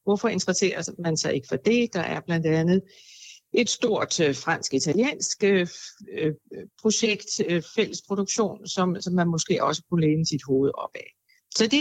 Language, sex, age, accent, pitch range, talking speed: Danish, female, 60-79, native, 165-215 Hz, 140 wpm